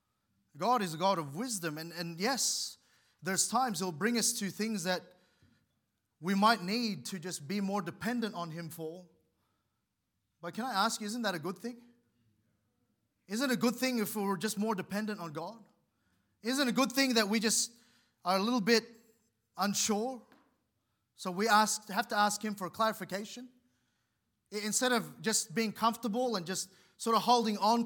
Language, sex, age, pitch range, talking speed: English, male, 30-49, 150-220 Hz, 185 wpm